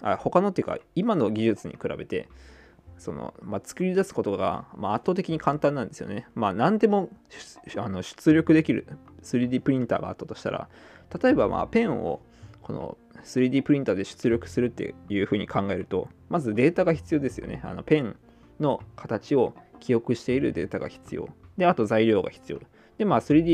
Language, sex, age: Japanese, male, 20-39